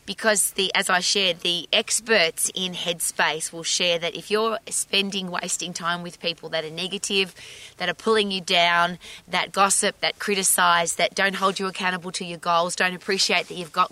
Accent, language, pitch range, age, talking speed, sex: Australian, English, 175-225 Hz, 20-39, 190 wpm, female